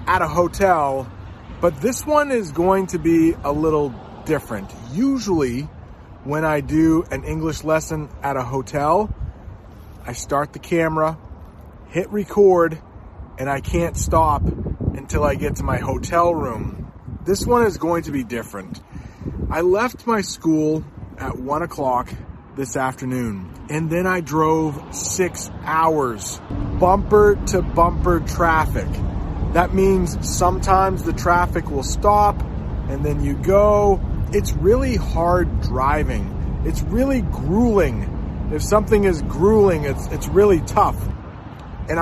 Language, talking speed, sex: English, 135 wpm, male